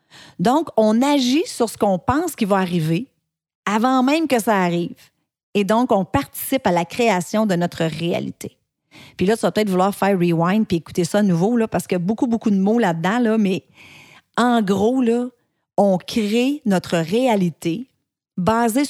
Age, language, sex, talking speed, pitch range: 40-59, French, female, 190 wpm, 180-235 Hz